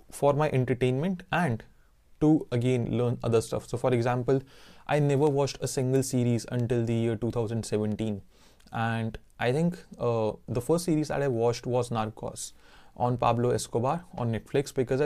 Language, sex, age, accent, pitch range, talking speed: Hindi, male, 20-39, native, 115-145 Hz, 160 wpm